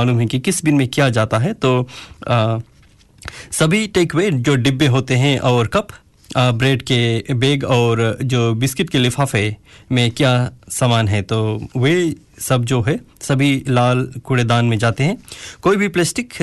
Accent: native